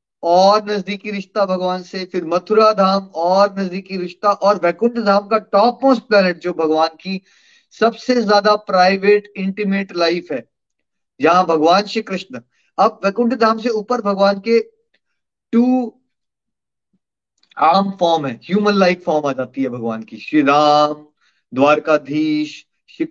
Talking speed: 140 wpm